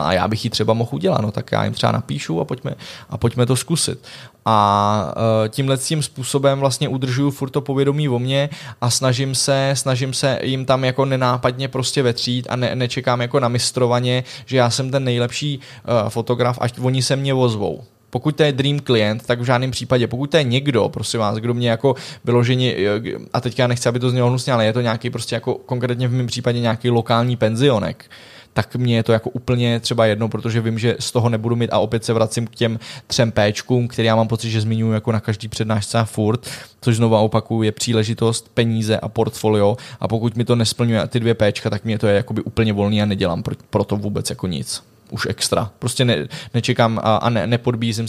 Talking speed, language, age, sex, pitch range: 210 wpm, Czech, 20-39, male, 110-125 Hz